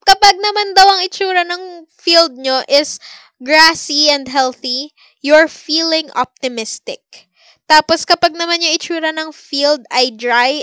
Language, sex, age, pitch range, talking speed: Filipino, female, 10-29, 265-335 Hz, 125 wpm